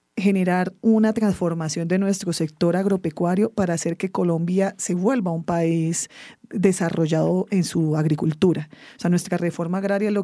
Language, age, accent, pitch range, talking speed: English, 30-49, Colombian, 165-185 Hz, 145 wpm